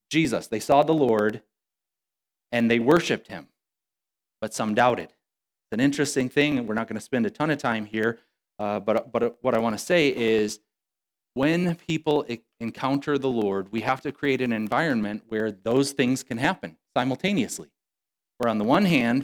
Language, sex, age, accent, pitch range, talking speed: English, male, 30-49, American, 110-140 Hz, 180 wpm